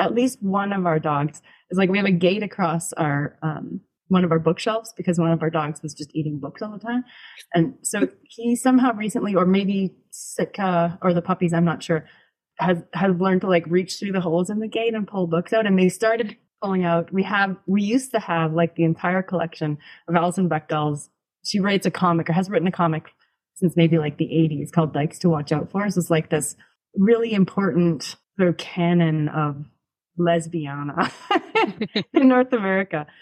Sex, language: female, English